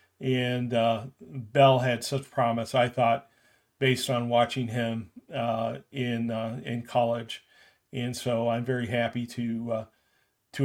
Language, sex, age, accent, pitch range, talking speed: English, male, 40-59, American, 120-135 Hz, 140 wpm